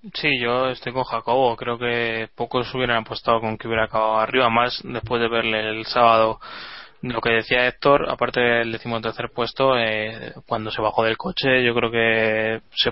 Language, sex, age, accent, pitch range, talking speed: Spanish, male, 20-39, Spanish, 115-125 Hz, 180 wpm